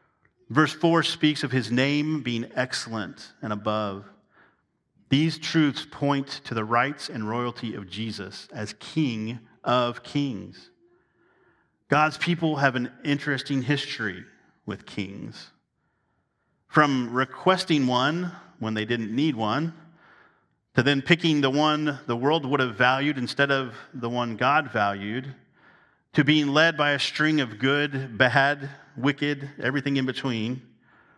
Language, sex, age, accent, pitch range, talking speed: English, male, 40-59, American, 120-150 Hz, 135 wpm